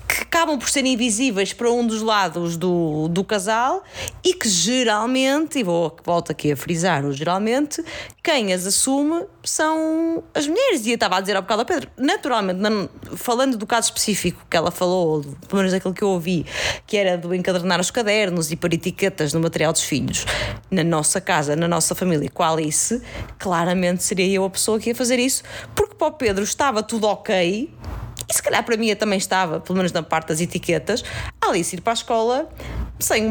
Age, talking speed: 20-39, 195 wpm